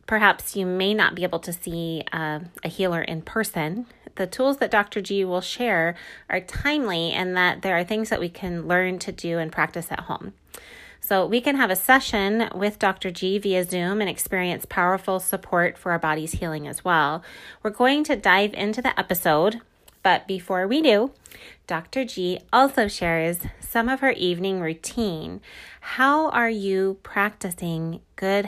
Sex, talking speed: female, 175 wpm